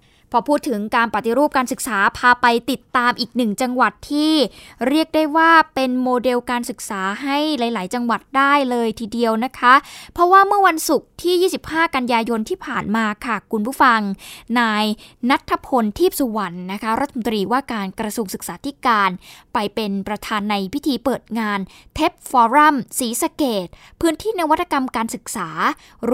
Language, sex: Thai, female